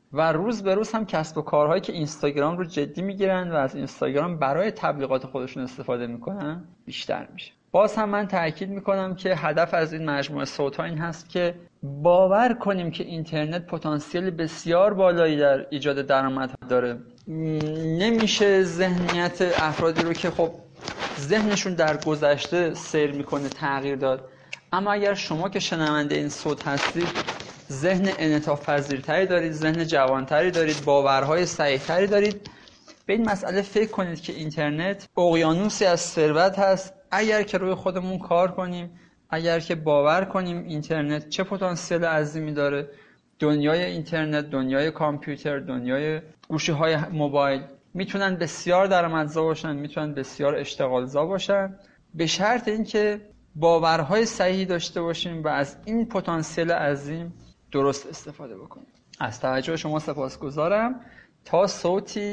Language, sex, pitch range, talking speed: Persian, male, 145-185 Hz, 135 wpm